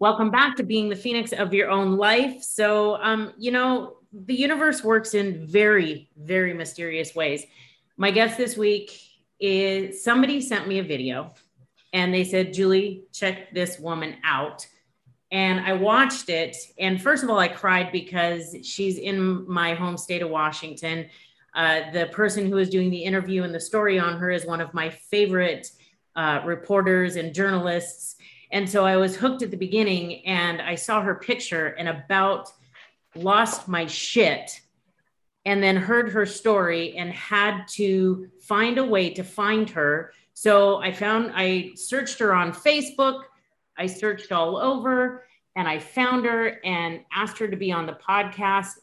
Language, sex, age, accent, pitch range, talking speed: English, female, 30-49, American, 170-215 Hz, 165 wpm